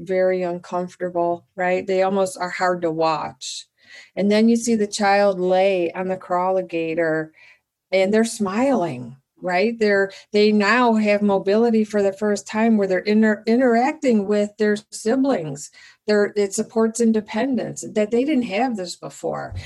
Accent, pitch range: American, 180-215 Hz